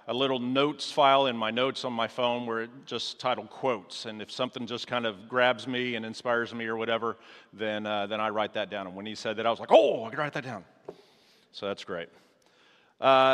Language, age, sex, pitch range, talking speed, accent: English, 40-59, male, 115-140 Hz, 240 wpm, American